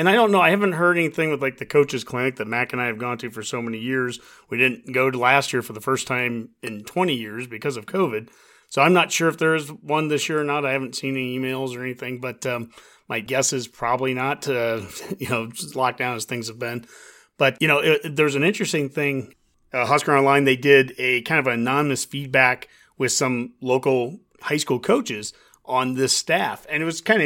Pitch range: 125-145 Hz